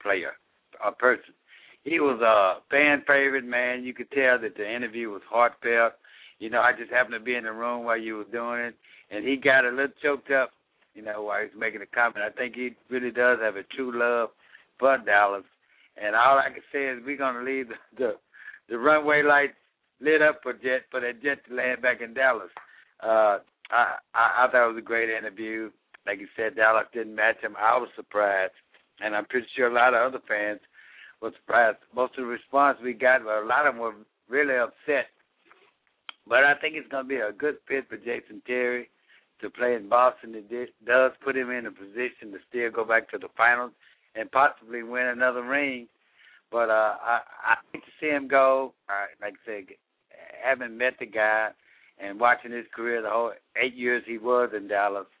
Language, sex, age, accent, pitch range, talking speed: English, male, 60-79, American, 115-135 Hz, 210 wpm